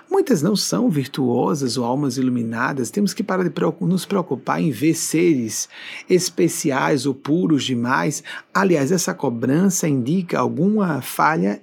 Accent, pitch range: Brazilian, 135-190 Hz